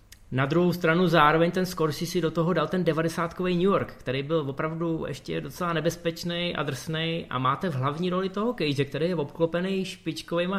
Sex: male